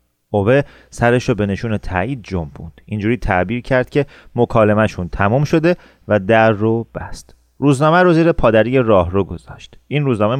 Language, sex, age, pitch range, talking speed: Persian, male, 30-49, 105-135 Hz, 155 wpm